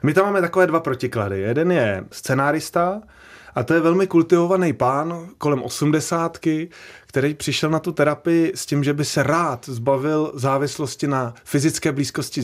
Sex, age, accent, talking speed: male, 30-49, native, 160 wpm